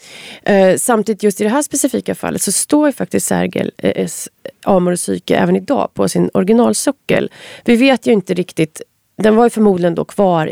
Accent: native